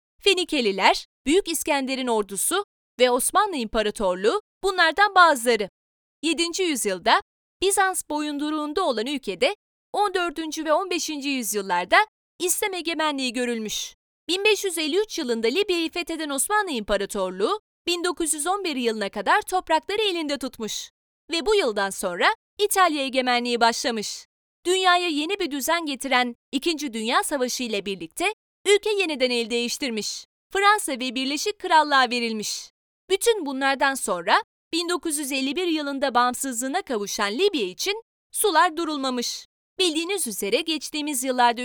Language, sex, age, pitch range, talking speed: Turkish, female, 30-49, 250-365 Hz, 110 wpm